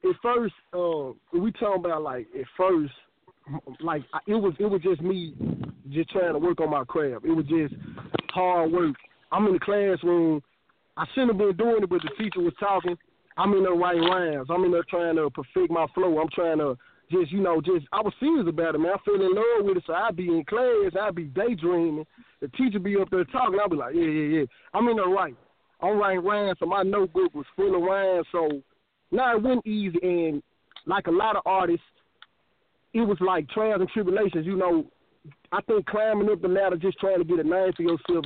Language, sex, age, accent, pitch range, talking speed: English, male, 20-39, American, 165-205 Hz, 225 wpm